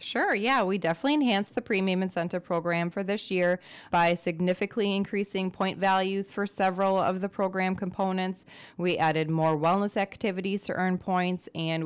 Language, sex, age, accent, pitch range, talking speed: English, female, 20-39, American, 155-190 Hz, 160 wpm